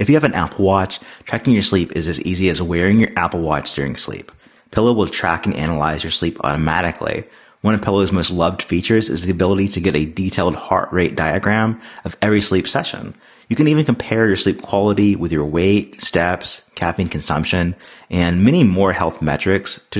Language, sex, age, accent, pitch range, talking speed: English, male, 30-49, American, 80-100 Hz, 200 wpm